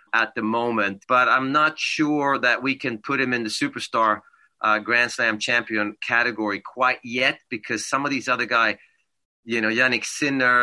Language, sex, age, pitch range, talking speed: English, male, 30-49, 120-170 Hz, 180 wpm